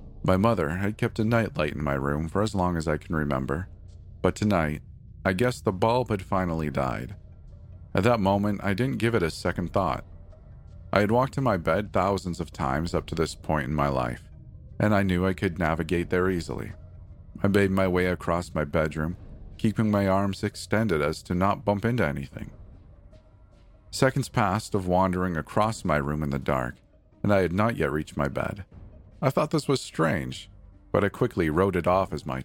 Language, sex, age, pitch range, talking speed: English, male, 40-59, 80-100 Hz, 200 wpm